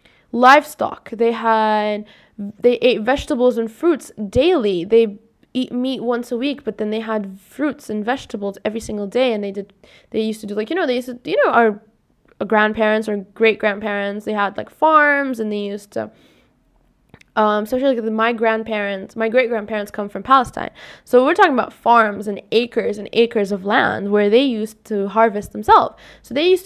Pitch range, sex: 205-245 Hz, female